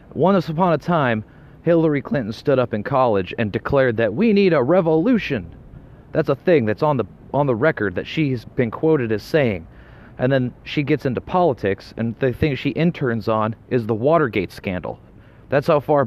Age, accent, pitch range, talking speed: 30-49, American, 105-135 Hz, 185 wpm